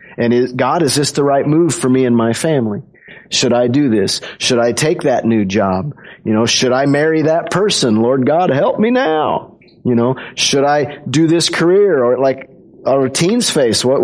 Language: English